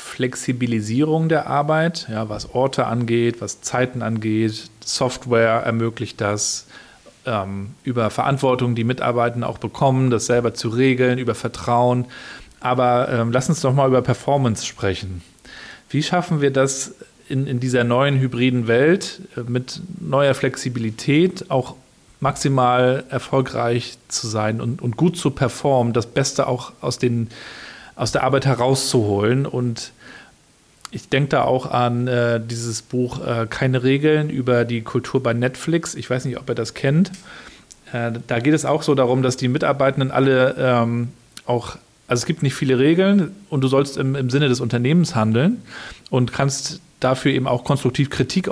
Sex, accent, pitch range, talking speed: male, German, 120-140 Hz, 155 wpm